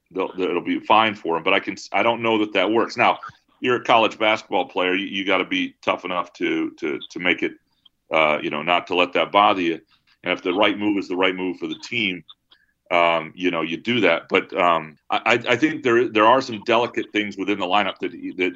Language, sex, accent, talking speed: English, male, American, 240 wpm